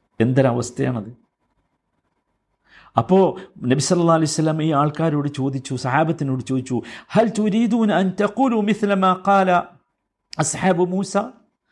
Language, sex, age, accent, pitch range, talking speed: Malayalam, male, 50-69, native, 175-230 Hz, 145 wpm